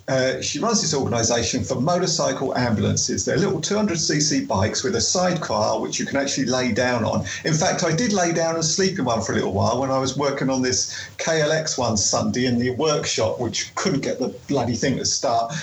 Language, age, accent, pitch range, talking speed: English, 40-59, British, 125-165 Hz, 215 wpm